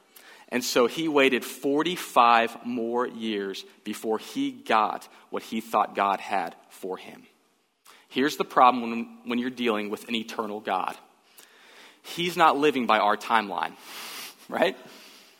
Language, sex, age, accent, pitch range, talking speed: English, male, 30-49, American, 120-180 Hz, 135 wpm